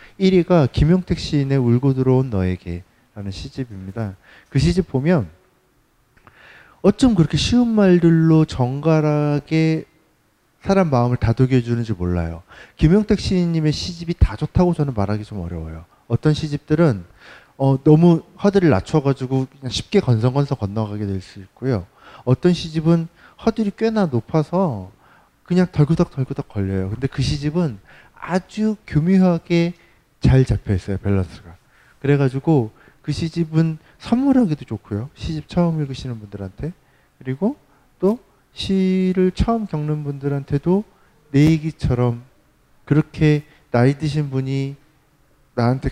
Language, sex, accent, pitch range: Korean, male, native, 115-165 Hz